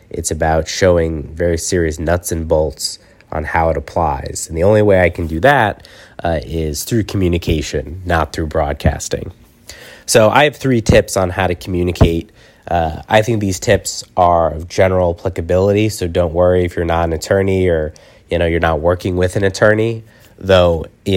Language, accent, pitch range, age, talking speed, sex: English, American, 85-100 Hz, 20-39, 180 wpm, male